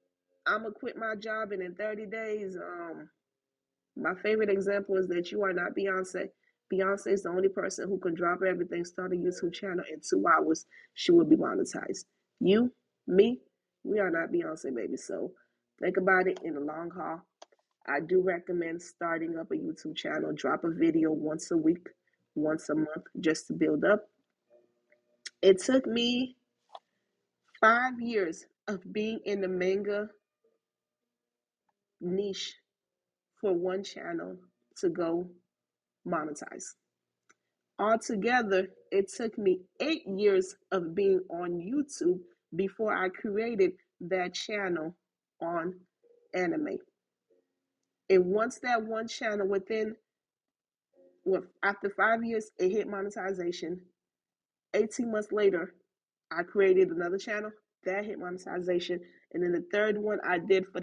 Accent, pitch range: American, 175-220 Hz